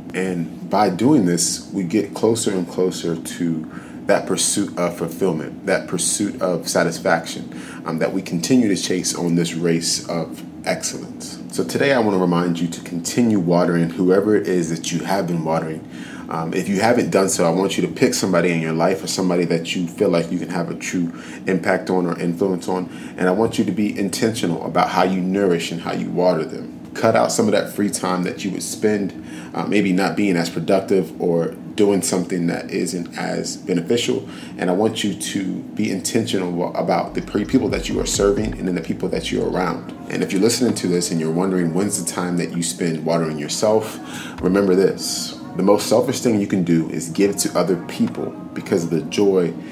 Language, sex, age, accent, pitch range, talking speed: English, male, 30-49, American, 85-95 Hz, 210 wpm